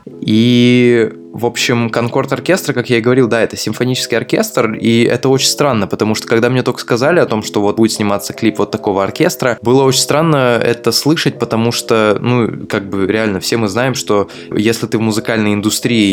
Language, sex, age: Russian, male, 20-39